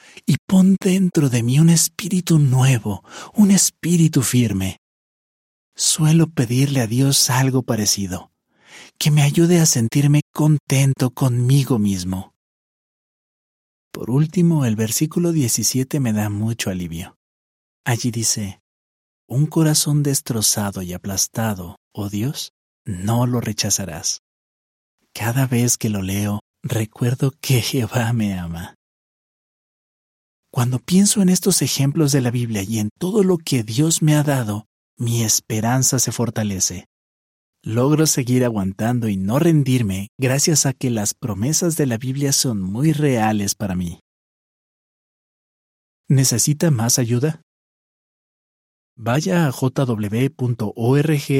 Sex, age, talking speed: male, 40-59, 120 wpm